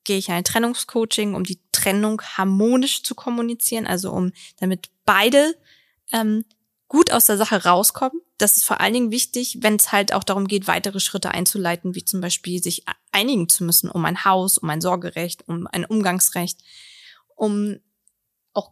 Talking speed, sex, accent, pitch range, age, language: 170 wpm, female, German, 190-225 Hz, 20-39, German